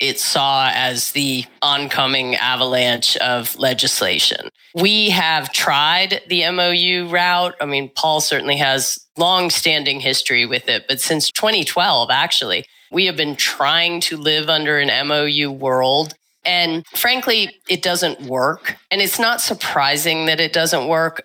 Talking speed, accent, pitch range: 140 wpm, American, 140-175 Hz